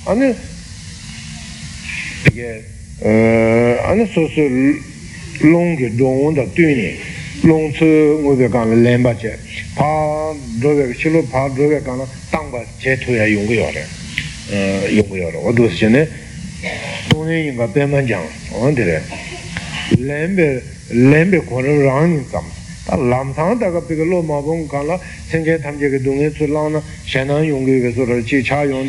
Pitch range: 120-155 Hz